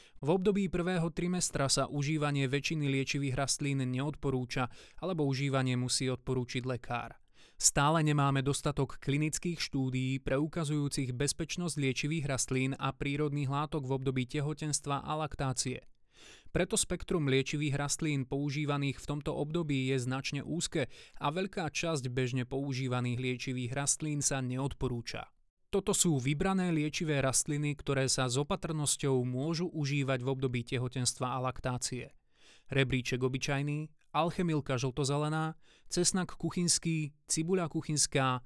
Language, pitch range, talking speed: Slovak, 130-155 Hz, 120 wpm